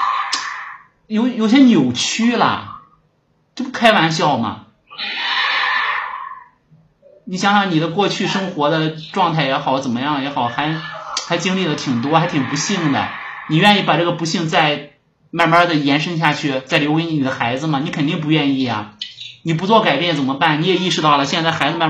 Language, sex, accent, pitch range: Chinese, male, native, 145-205 Hz